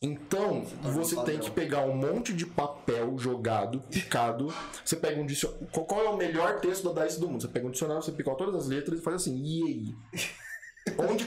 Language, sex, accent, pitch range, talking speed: Portuguese, male, Brazilian, 125-180 Hz, 195 wpm